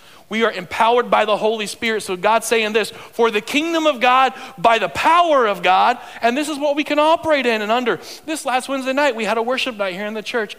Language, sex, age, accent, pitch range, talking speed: English, male, 40-59, American, 155-240 Hz, 250 wpm